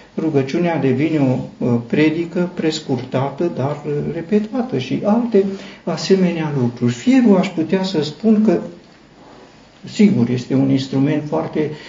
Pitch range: 145-220 Hz